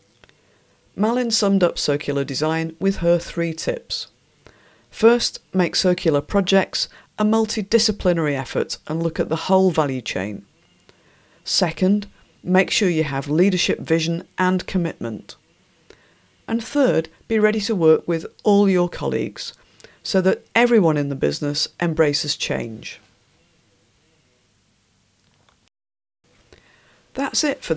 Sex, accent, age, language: female, British, 50-69, English